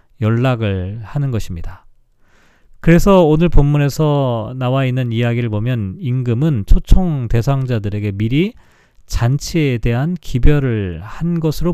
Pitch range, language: 110-155 Hz, Korean